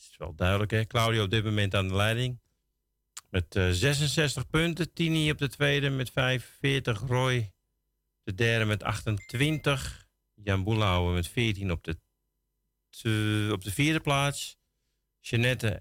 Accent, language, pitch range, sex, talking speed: Dutch, Dutch, 90-130 Hz, male, 150 wpm